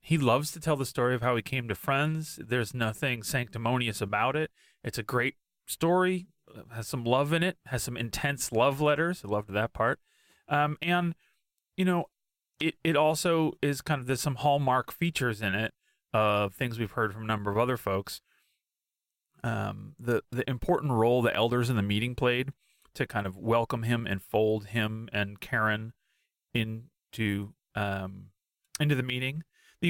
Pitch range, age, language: 110-140 Hz, 30-49, English